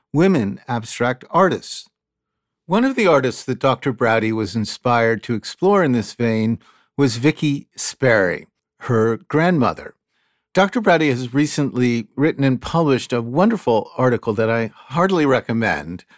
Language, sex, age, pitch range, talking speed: English, male, 50-69, 115-150 Hz, 135 wpm